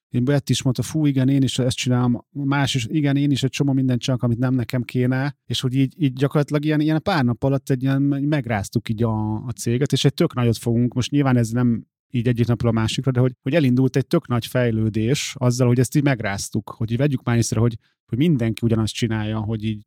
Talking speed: 240 wpm